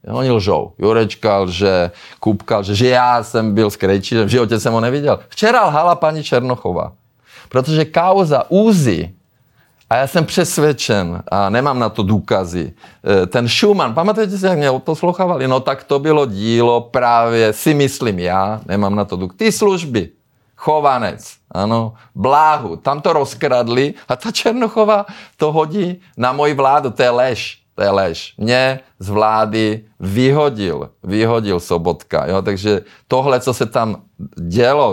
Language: Czech